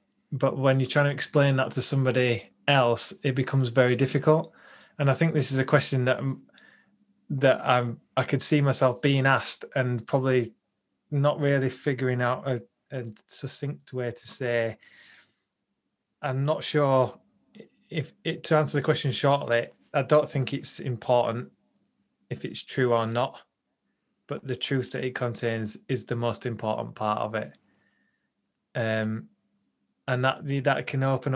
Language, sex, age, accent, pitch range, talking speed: English, male, 20-39, British, 125-145 Hz, 155 wpm